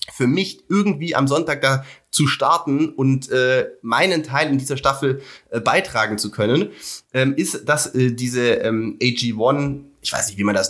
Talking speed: 180 wpm